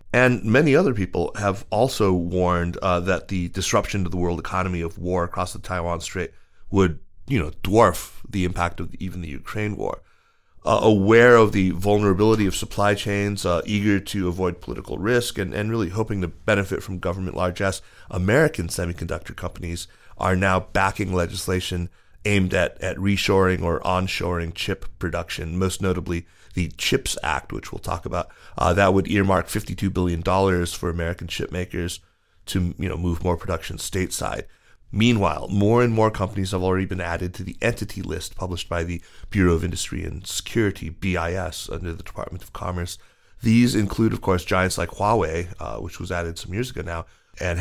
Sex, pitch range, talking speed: male, 85-100 Hz, 175 wpm